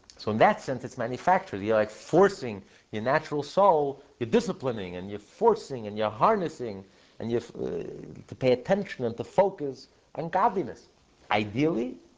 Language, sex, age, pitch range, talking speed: English, male, 50-69, 115-155 Hz, 160 wpm